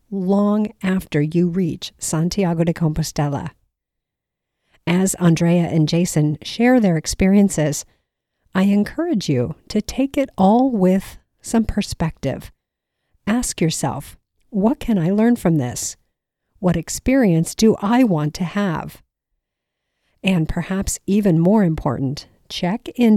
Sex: female